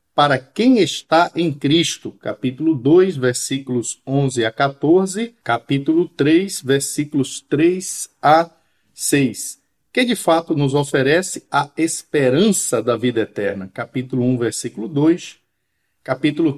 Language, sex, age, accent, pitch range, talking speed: Portuguese, male, 50-69, Brazilian, 135-180 Hz, 115 wpm